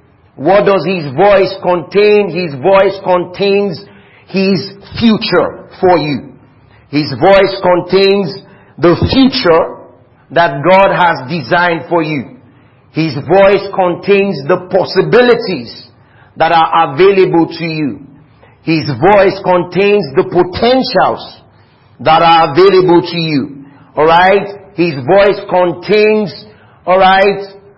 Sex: male